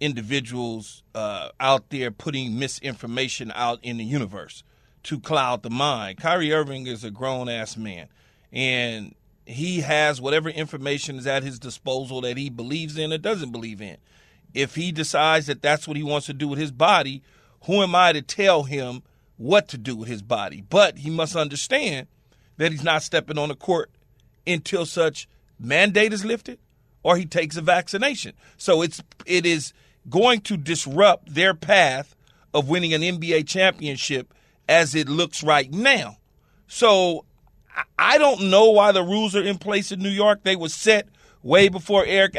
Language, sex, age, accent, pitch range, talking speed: English, male, 40-59, American, 135-185 Hz, 170 wpm